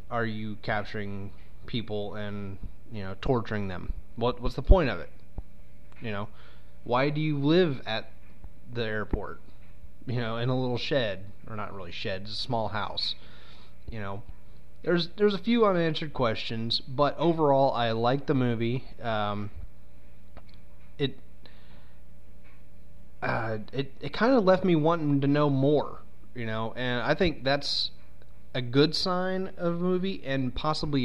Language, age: English, 30-49